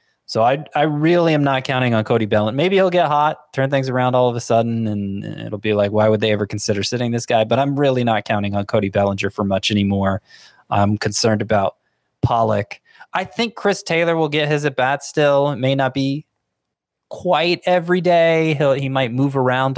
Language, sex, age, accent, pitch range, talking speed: English, male, 20-39, American, 105-135 Hz, 210 wpm